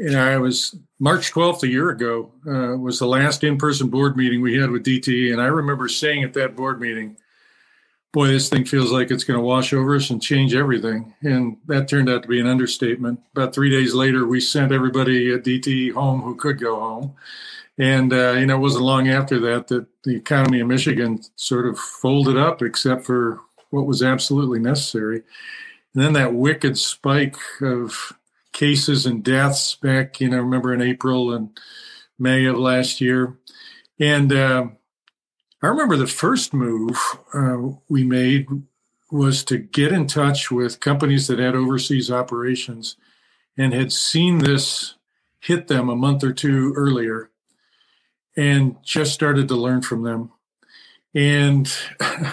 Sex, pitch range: male, 125-145 Hz